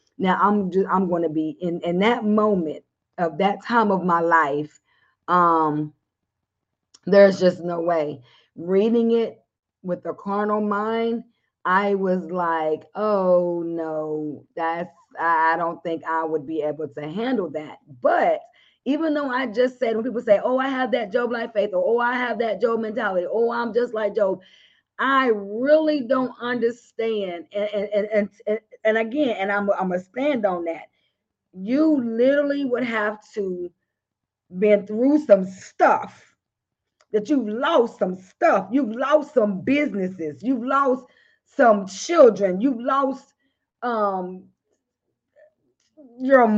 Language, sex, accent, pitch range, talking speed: English, female, American, 185-260 Hz, 150 wpm